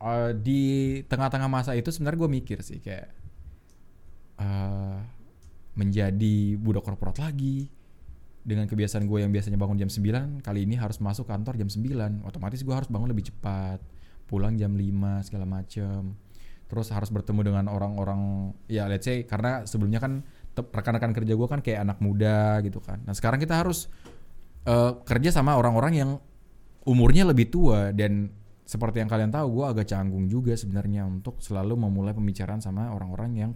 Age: 20-39